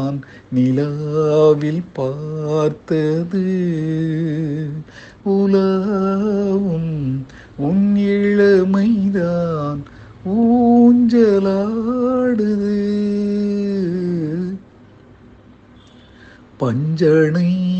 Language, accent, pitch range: Tamil, native, 150-200 Hz